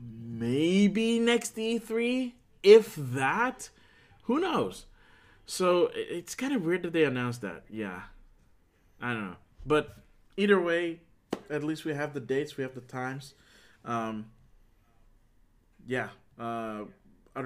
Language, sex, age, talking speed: English, male, 20-39, 125 wpm